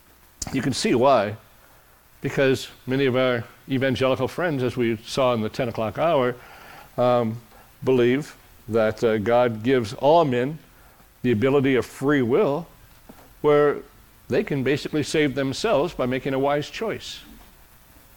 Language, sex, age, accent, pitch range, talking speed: English, male, 60-79, American, 110-150 Hz, 140 wpm